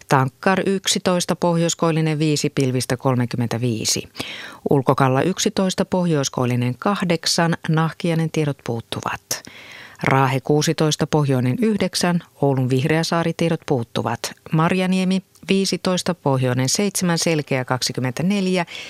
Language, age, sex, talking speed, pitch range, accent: Finnish, 30-49, female, 85 wpm, 135-180 Hz, native